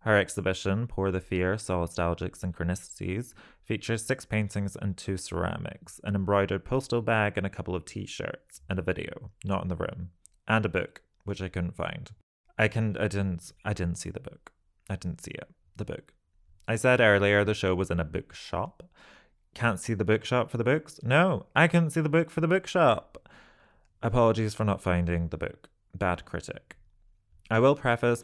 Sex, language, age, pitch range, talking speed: male, English, 20-39, 90-115 Hz, 185 wpm